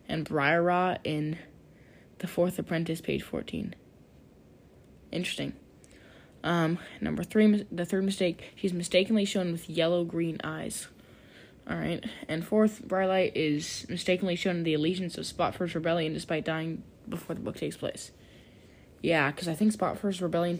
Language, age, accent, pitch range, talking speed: English, 10-29, American, 160-195 Hz, 140 wpm